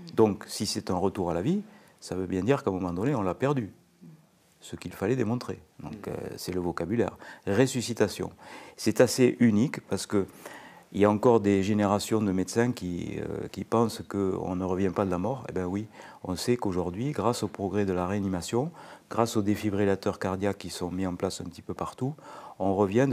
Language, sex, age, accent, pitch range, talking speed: French, male, 50-69, French, 90-115 Hz, 200 wpm